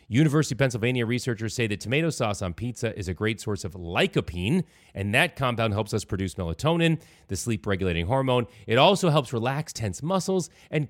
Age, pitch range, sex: 30-49, 100-150 Hz, male